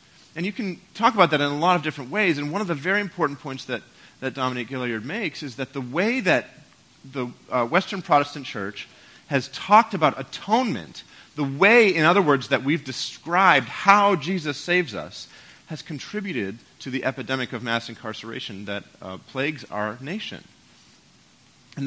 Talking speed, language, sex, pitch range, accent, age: 175 wpm, English, male, 115-165 Hz, American, 40-59